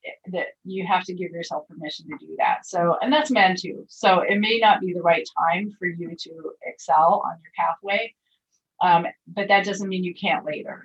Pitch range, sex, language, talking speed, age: 165-195 Hz, female, English, 210 wpm, 30-49